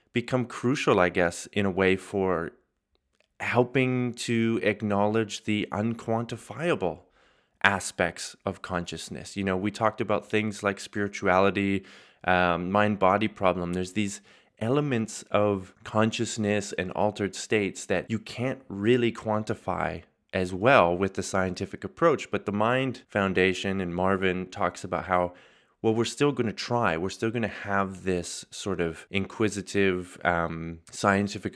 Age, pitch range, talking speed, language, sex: 20-39, 90-115 Hz, 135 wpm, English, male